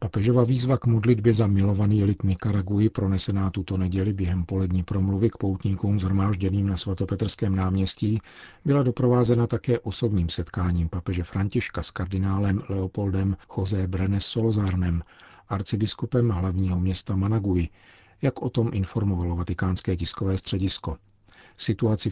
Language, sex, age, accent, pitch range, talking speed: Czech, male, 50-69, native, 95-110 Hz, 120 wpm